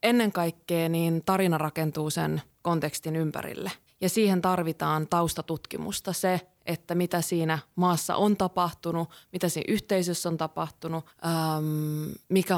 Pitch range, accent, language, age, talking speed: 155-180 Hz, native, Finnish, 20-39, 120 wpm